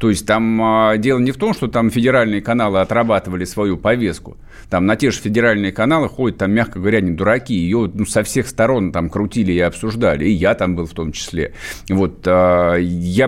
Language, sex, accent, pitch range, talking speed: Russian, male, native, 90-115 Hz, 200 wpm